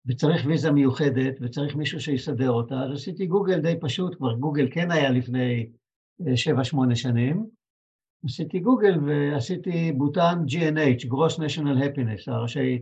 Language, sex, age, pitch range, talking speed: Hebrew, male, 60-79, 130-165 Hz, 135 wpm